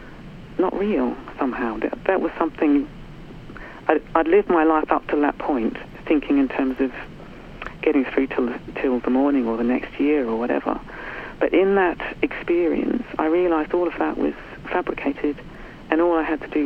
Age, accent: 50-69, British